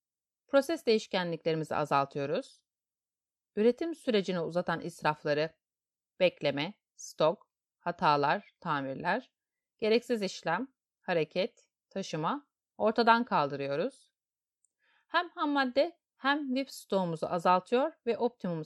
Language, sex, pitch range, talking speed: Turkish, female, 165-240 Hz, 80 wpm